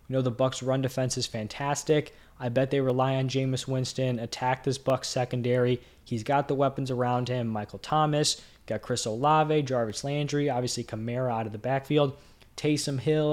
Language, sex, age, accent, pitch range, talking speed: English, male, 20-39, American, 125-145 Hz, 180 wpm